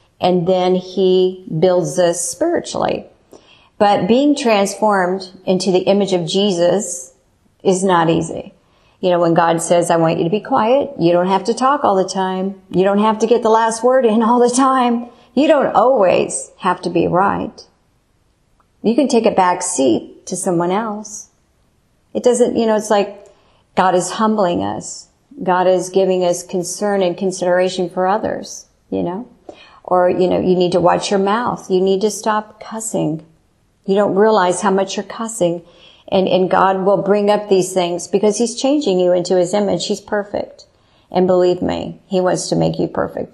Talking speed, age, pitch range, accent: 185 wpm, 50-69, 180-210 Hz, American